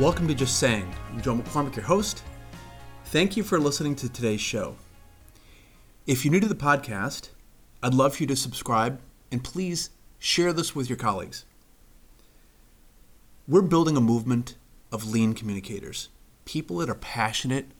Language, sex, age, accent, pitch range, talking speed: English, male, 30-49, American, 105-135 Hz, 155 wpm